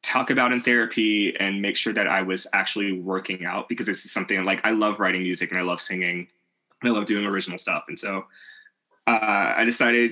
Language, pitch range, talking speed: English, 100-120 Hz, 220 wpm